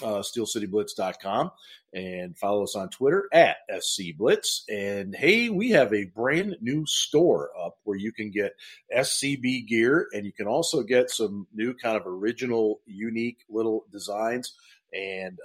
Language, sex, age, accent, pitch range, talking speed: English, male, 40-59, American, 100-140 Hz, 150 wpm